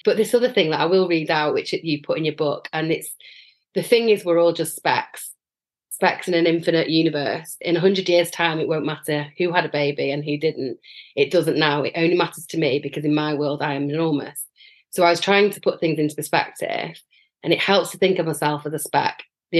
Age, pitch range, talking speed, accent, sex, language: 30-49, 155-215 Hz, 240 wpm, British, female, English